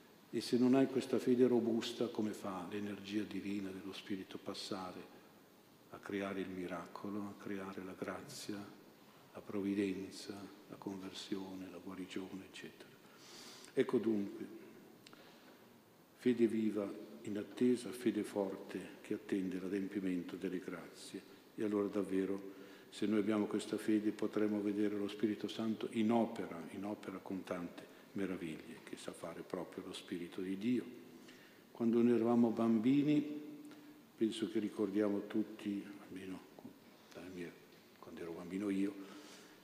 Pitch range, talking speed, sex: 95-115 Hz, 125 wpm, male